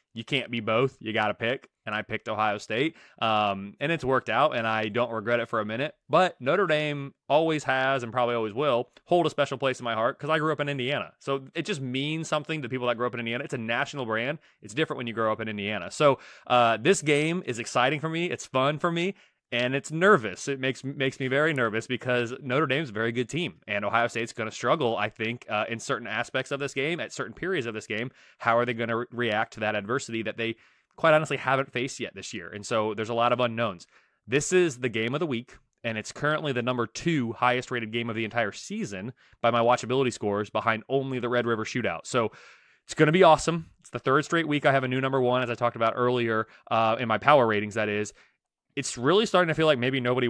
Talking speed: 255 wpm